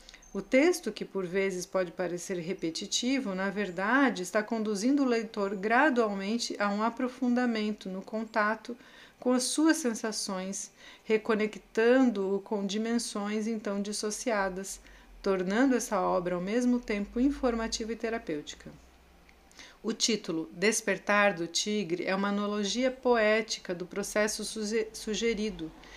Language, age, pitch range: Portuguese, 40-59, 195-235 Hz